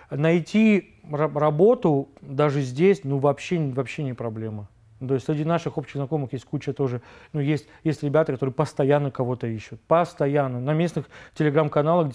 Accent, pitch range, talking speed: native, 140-170 Hz, 150 wpm